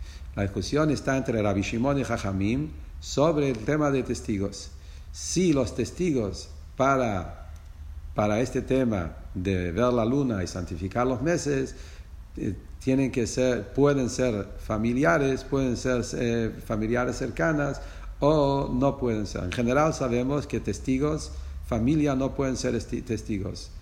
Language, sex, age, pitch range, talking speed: English, male, 50-69, 95-140 Hz, 140 wpm